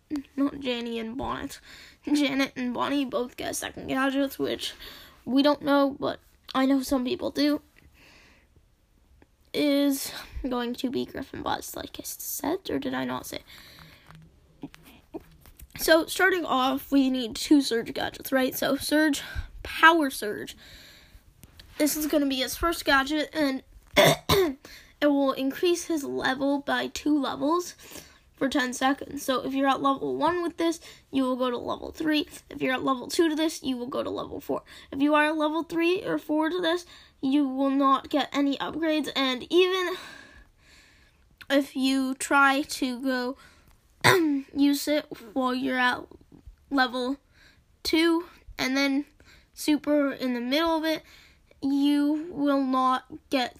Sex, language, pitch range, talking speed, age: female, English, 260-305 Hz, 155 wpm, 10-29